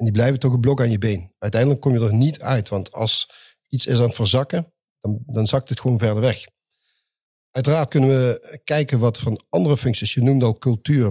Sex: male